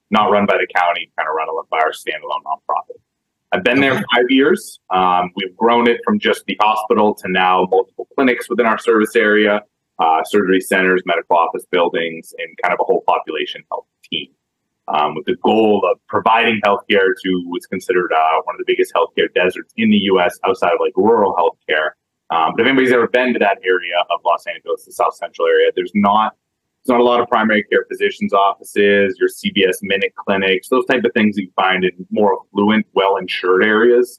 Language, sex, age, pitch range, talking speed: English, male, 30-49, 95-140 Hz, 200 wpm